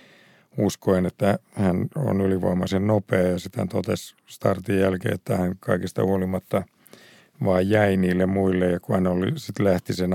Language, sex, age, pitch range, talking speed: Finnish, male, 50-69, 95-110 Hz, 150 wpm